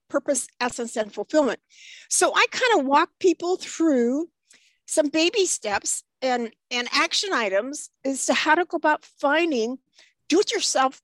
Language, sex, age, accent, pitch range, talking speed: English, female, 50-69, American, 240-335 Hz, 140 wpm